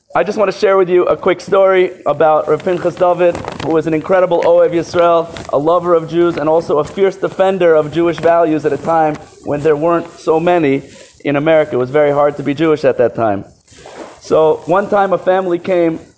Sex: male